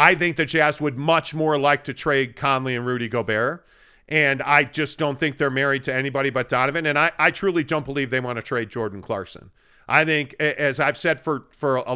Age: 40-59